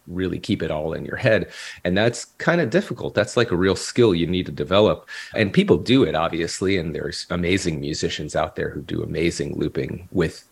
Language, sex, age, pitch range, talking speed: English, male, 30-49, 85-105 Hz, 210 wpm